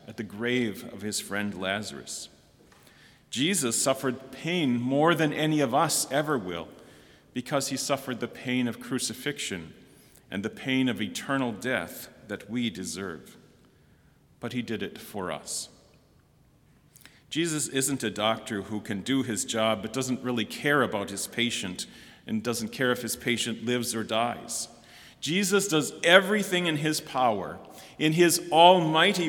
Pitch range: 115-145 Hz